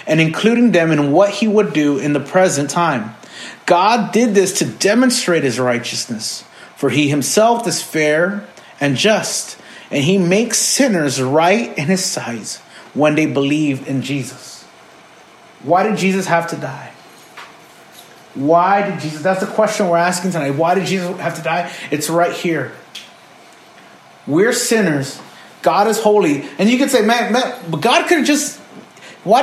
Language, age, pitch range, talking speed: English, 30-49, 150-210 Hz, 160 wpm